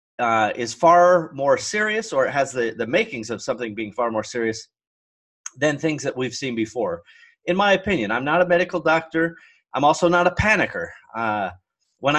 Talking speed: 200 wpm